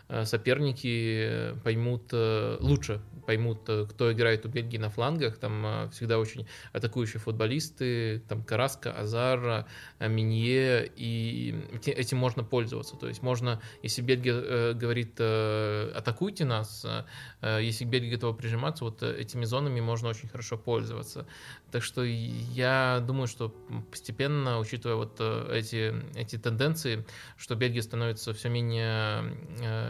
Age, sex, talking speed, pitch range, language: 20-39, male, 115 wpm, 115-130 Hz, Russian